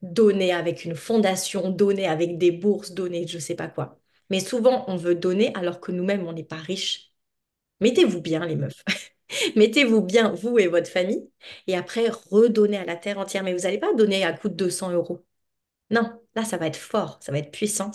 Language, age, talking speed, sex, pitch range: French, 30-49, 210 wpm, female, 180-225 Hz